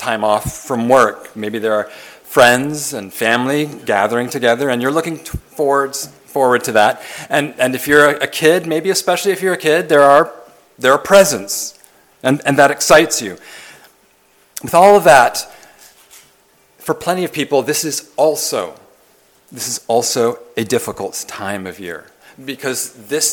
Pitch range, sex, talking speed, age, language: 125-160 Hz, male, 165 wpm, 40-59, English